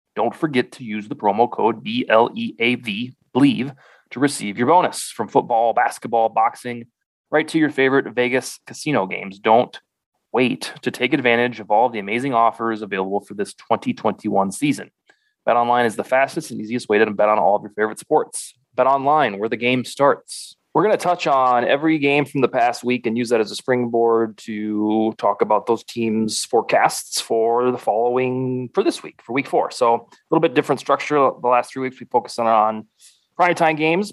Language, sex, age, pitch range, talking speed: English, male, 20-39, 115-145 Hz, 190 wpm